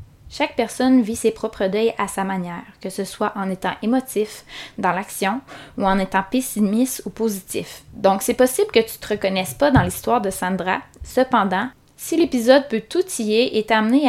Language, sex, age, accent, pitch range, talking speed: French, female, 20-39, Canadian, 195-255 Hz, 190 wpm